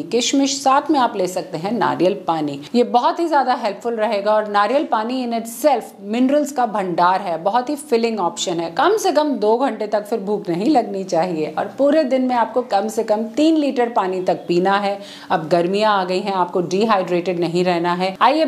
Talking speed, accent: 220 wpm, native